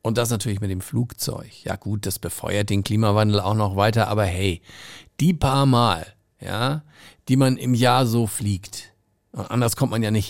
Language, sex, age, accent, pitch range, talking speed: German, male, 50-69, German, 105-135 Hz, 185 wpm